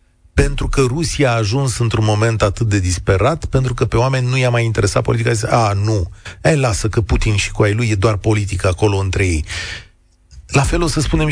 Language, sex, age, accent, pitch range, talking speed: Romanian, male, 40-59, native, 95-135 Hz, 215 wpm